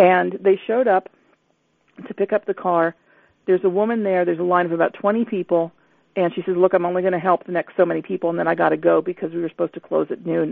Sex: female